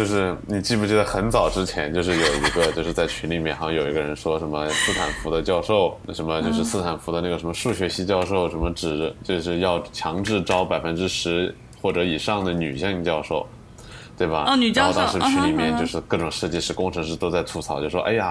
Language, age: Chinese, 20-39